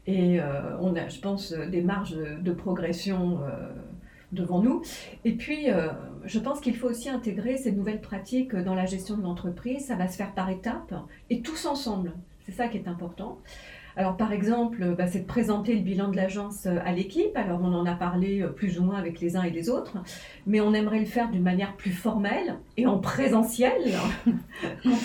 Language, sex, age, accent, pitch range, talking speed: French, female, 40-59, French, 180-225 Hz, 200 wpm